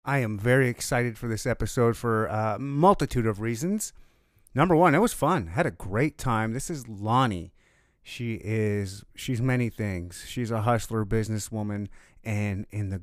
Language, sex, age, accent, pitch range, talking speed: English, male, 30-49, American, 105-130 Hz, 165 wpm